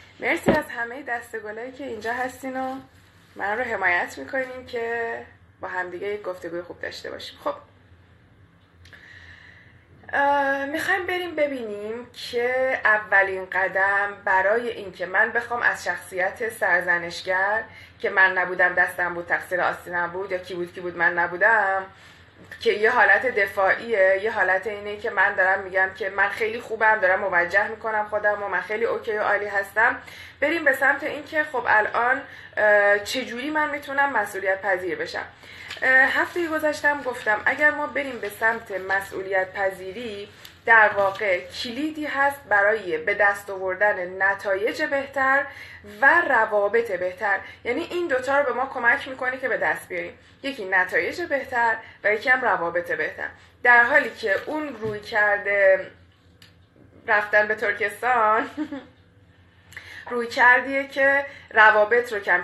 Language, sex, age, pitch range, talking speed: Persian, female, 20-39, 190-255 Hz, 140 wpm